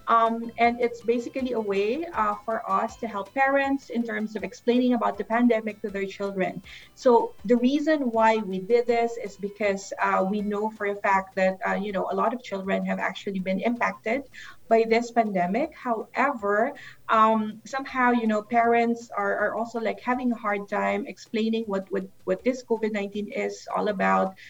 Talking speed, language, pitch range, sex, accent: 185 wpm, English, 200-235 Hz, female, Filipino